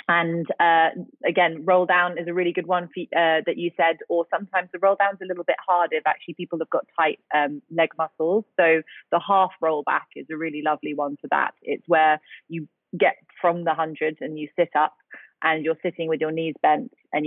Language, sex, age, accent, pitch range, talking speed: English, female, 30-49, British, 155-180 Hz, 220 wpm